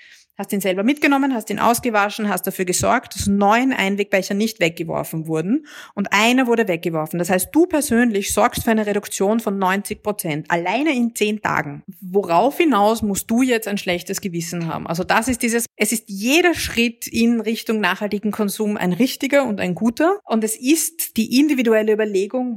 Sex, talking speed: female, 180 wpm